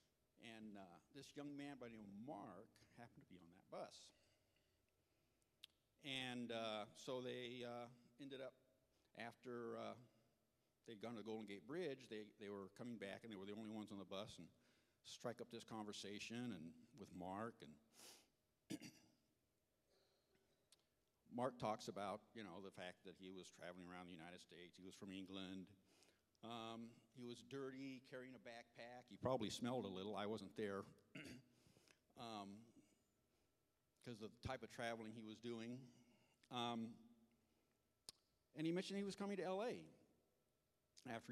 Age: 60-79